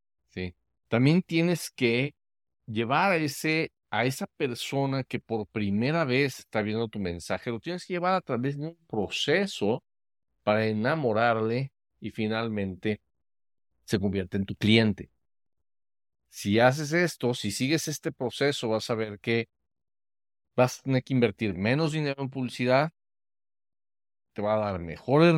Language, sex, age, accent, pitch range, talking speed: Spanish, male, 50-69, Mexican, 105-145 Hz, 140 wpm